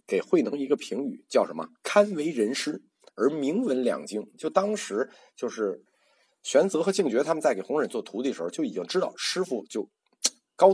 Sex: male